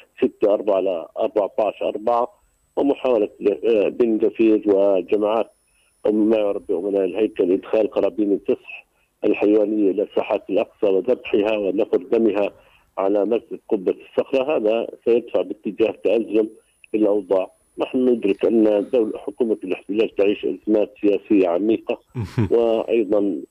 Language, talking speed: Arabic, 110 wpm